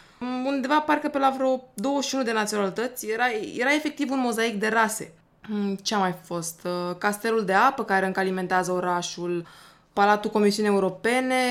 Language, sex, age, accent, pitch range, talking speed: Romanian, female, 20-39, native, 190-245 Hz, 145 wpm